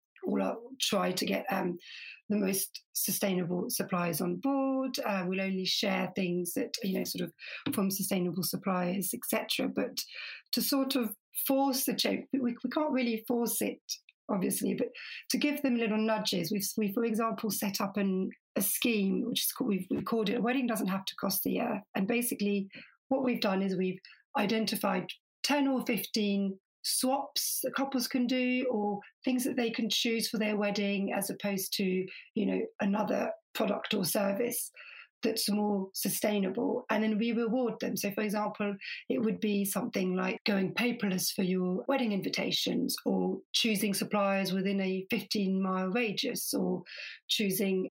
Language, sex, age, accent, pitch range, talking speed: English, female, 40-59, British, 195-245 Hz, 170 wpm